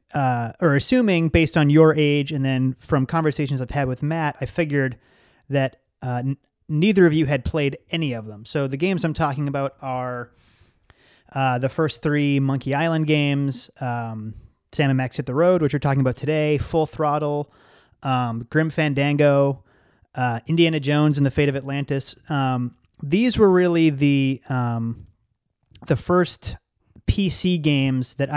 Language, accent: English, American